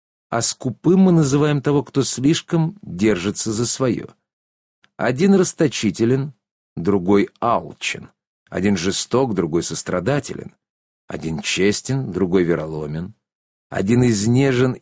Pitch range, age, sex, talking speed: 95-130 Hz, 50-69, male, 95 wpm